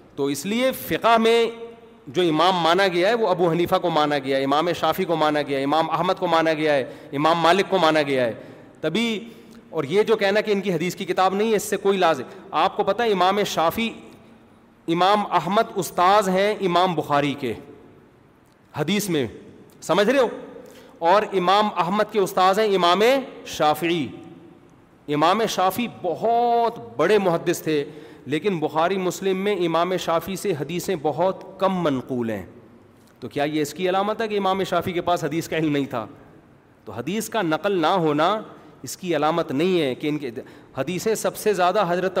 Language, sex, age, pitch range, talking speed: Urdu, male, 40-59, 155-195 Hz, 190 wpm